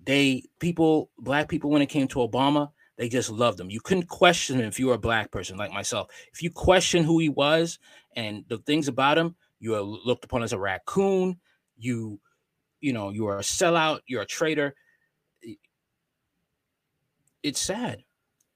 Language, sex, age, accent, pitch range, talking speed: English, male, 20-39, American, 120-155 Hz, 175 wpm